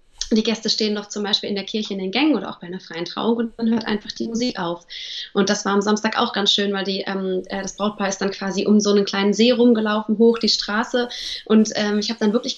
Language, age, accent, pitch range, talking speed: German, 20-39, German, 195-235 Hz, 265 wpm